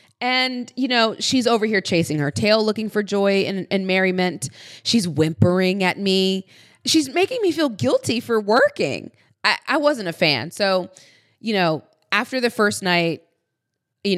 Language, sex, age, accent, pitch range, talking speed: English, female, 20-39, American, 160-250 Hz, 165 wpm